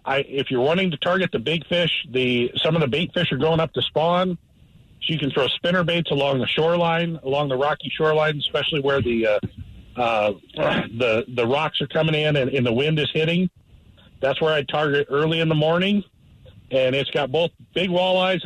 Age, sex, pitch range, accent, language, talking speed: 50-69, male, 130-175 Hz, American, English, 210 wpm